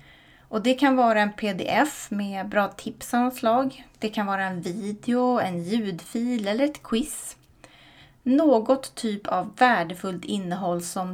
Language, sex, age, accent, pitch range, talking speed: Swedish, female, 30-49, native, 185-235 Hz, 140 wpm